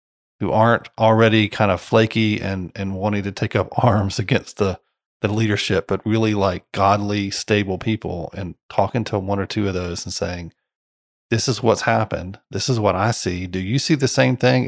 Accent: American